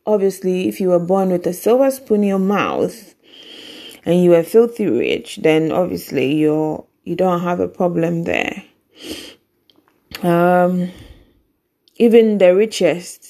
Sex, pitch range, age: female, 170-195 Hz, 20-39